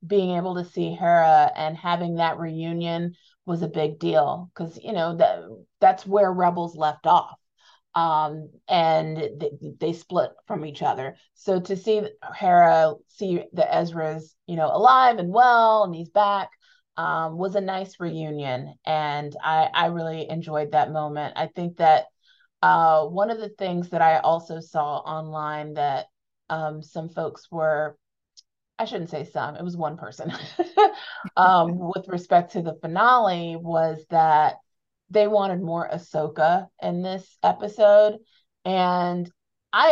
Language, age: English, 30-49